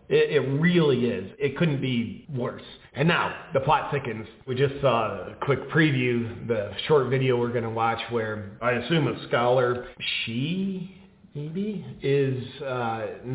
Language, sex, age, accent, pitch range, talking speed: English, male, 40-59, American, 125-155 Hz, 155 wpm